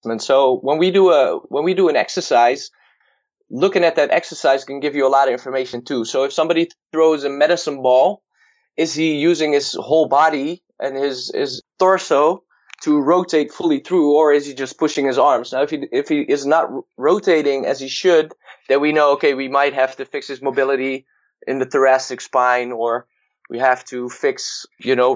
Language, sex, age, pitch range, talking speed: English, male, 20-39, 135-170 Hz, 200 wpm